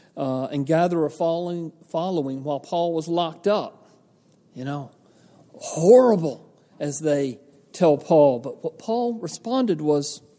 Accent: American